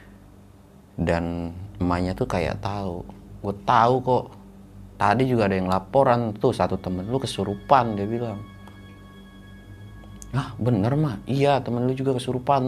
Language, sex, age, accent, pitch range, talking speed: Indonesian, male, 30-49, native, 90-115 Hz, 135 wpm